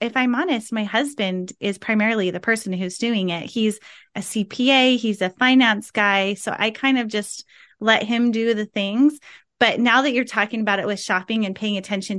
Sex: female